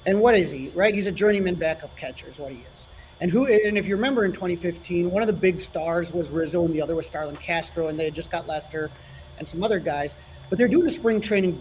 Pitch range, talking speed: 170-220 Hz, 270 wpm